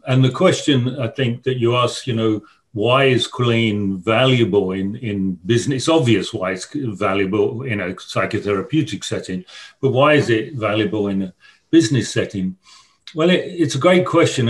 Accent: British